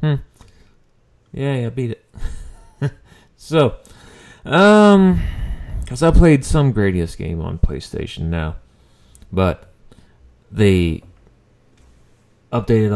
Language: English